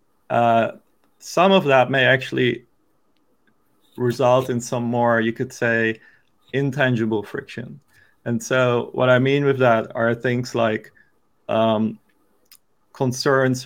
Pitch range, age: 115-125 Hz, 30-49